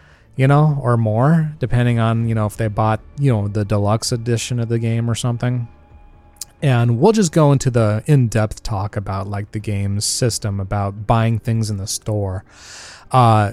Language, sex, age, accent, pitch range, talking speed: English, male, 30-49, American, 105-125 Hz, 180 wpm